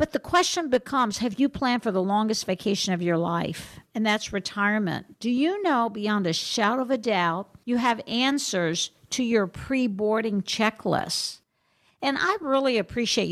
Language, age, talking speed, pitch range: English, 50-69, 165 wpm, 200-255 Hz